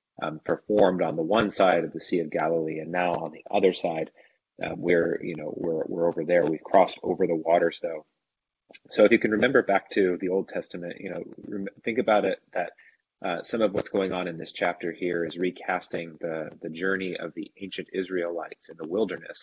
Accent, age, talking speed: American, 30-49, 215 wpm